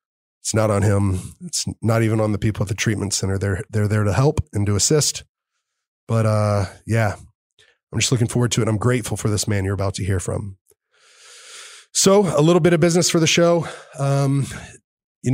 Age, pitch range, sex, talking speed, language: 20-39, 105-130 Hz, male, 205 wpm, English